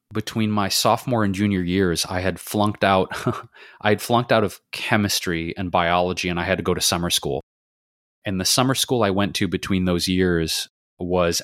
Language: English